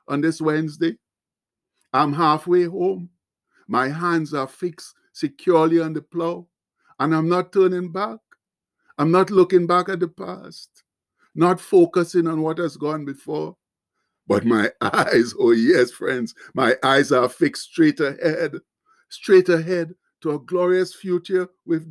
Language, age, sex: English, 60-79, male